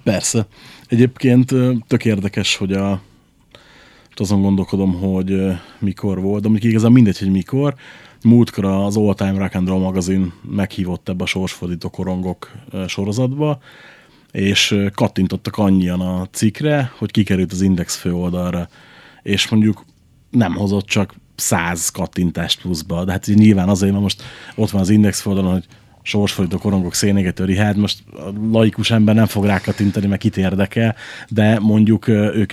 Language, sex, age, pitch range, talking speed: Hungarian, male, 30-49, 95-110 Hz, 140 wpm